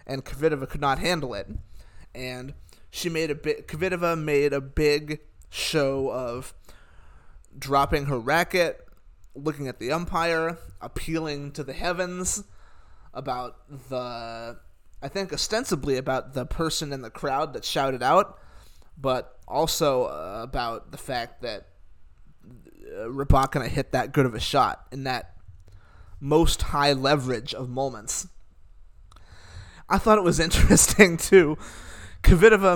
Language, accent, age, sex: English, American, 20-39, male